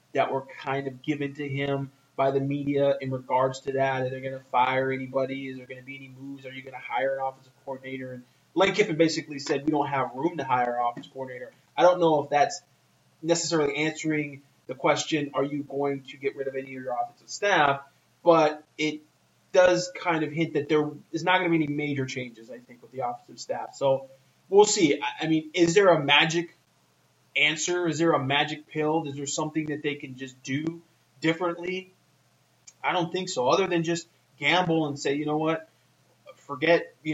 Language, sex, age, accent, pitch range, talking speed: English, male, 20-39, American, 130-155 Hz, 210 wpm